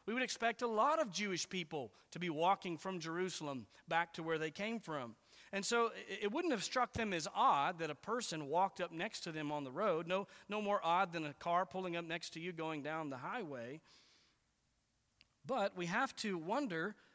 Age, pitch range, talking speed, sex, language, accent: 40-59, 160-235 Hz, 210 wpm, male, English, American